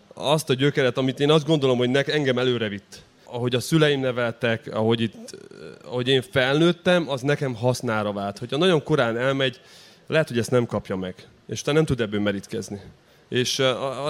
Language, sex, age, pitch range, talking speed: Hungarian, male, 30-49, 110-135 Hz, 185 wpm